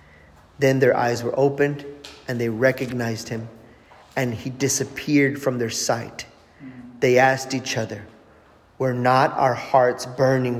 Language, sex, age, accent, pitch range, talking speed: English, male, 30-49, American, 115-140 Hz, 135 wpm